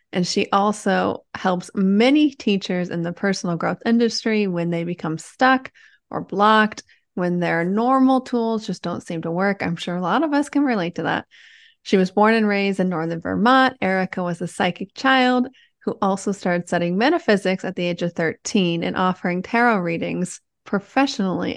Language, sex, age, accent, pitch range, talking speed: English, female, 30-49, American, 180-240 Hz, 180 wpm